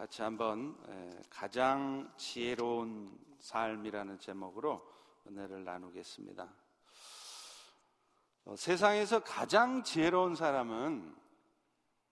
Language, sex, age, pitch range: Korean, male, 50-69, 130-190 Hz